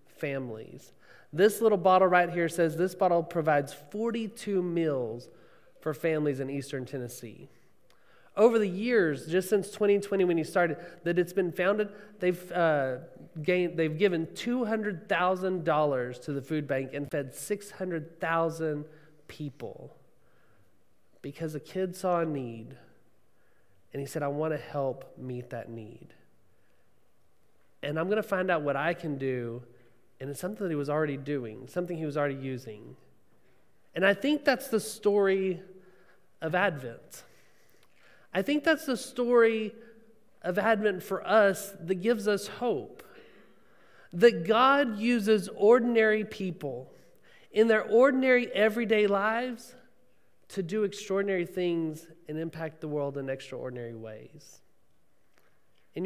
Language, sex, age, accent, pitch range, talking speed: English, male, 20-39, American, 145-210 Hz, 135 wpm